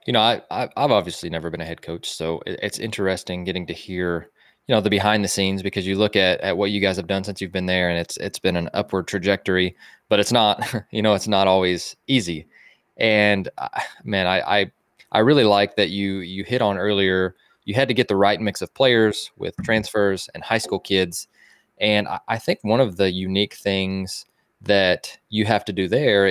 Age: 20-39